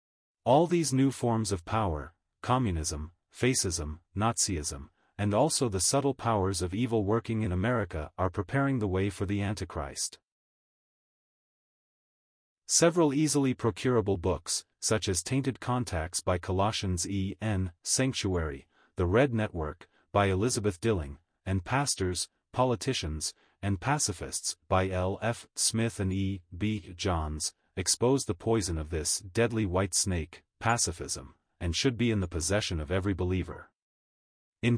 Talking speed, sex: 135 wpm, male